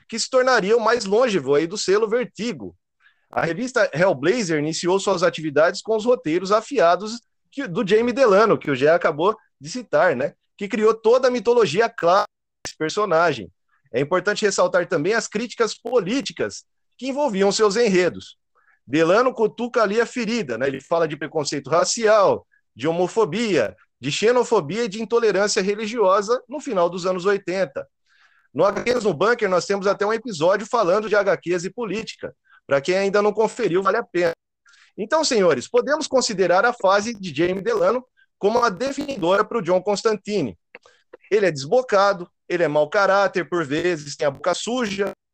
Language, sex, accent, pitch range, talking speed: Portuguese, male, Brazilian, 185-240 Hz, 165 wpm